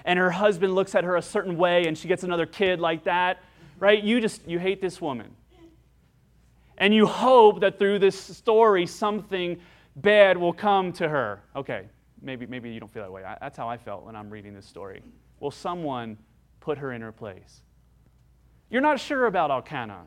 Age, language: 30-49, English